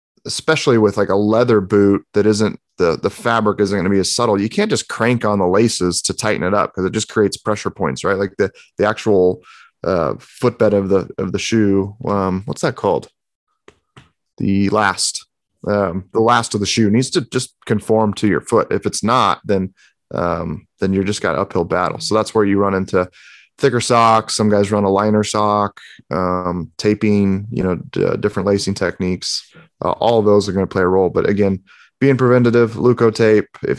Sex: male